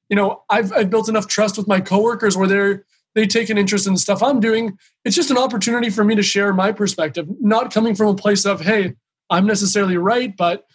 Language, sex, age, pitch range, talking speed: English, male, 20-39, 195-220 Hz, 230 wpm